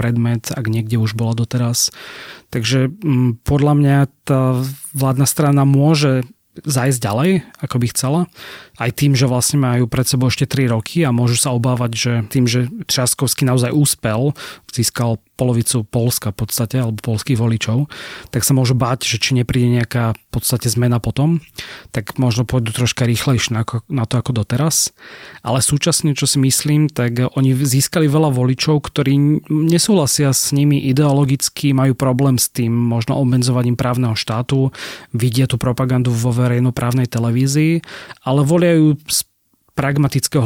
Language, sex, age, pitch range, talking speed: Slovak, male, 30-49, 120-140 Hz, 150 wpm